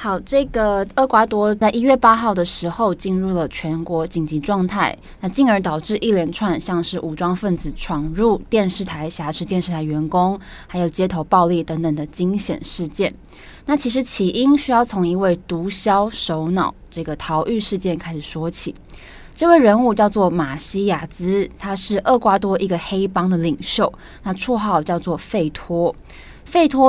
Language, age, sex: Chinese, 20-39, female